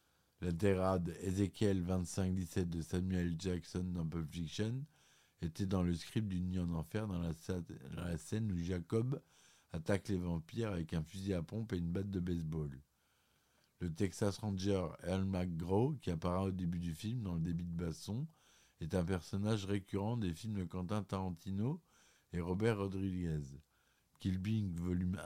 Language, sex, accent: French, male, French